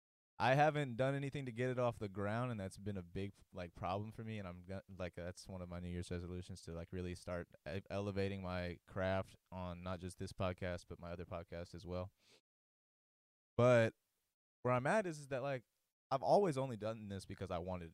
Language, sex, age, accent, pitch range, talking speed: English, male, 20-39, American, 90-115 Hz, 210 wpm